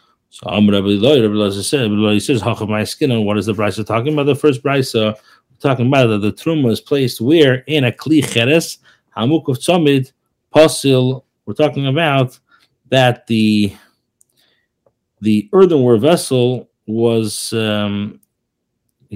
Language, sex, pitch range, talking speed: English, male, 110-140 Hz, 130 wpm